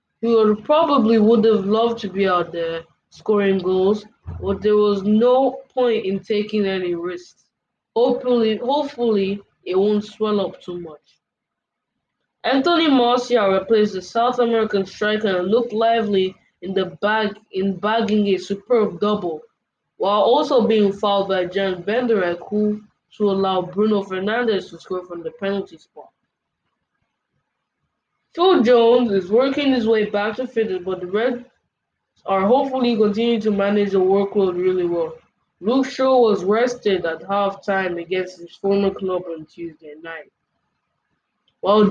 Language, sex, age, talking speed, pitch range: English, female, 20-39, 145 wpm, 190-230 Hz